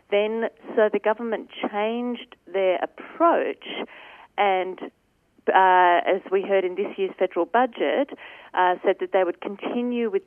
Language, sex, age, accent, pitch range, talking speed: English, female, 40-59, Australian, 170-225 Hz, 140 wpm